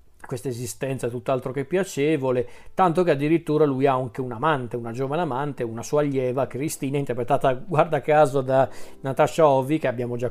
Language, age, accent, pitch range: Italian, 40-59, native, 135-160 Hz